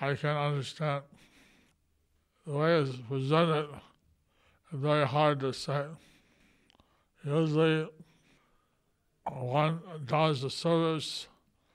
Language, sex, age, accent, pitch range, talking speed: English, male, 60-79, American, 140-155 Hz, 85 wpm